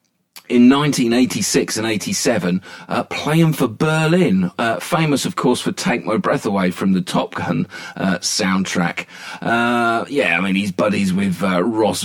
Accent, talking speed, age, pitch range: British, 160 wpm, 40-59, 90-120 Hz